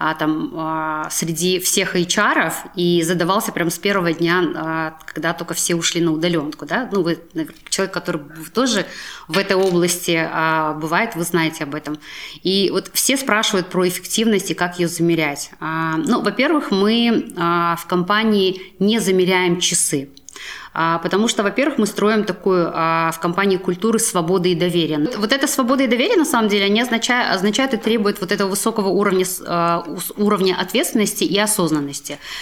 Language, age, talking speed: Russian, 20-39, 160 wpm